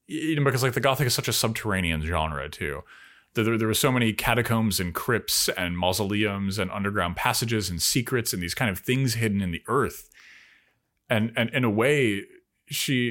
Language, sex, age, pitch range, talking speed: English, male, 30-49, 90-125 Hz, 190 wpm